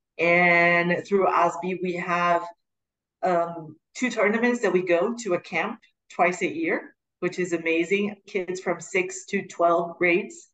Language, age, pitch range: English, 40-59, 170-200 Hz